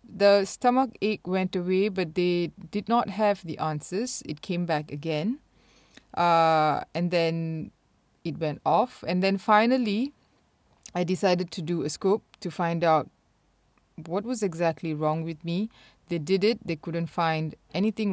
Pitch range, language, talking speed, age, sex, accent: 165-215 Hz, English, 155 wpm, 30-49, female, Malaysian